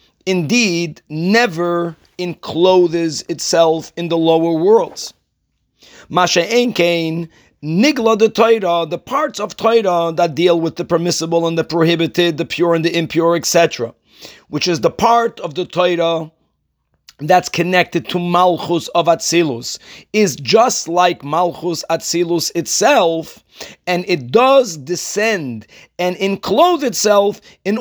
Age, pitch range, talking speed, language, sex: 40-59, 165-205 Hz, 125 wpm, English, male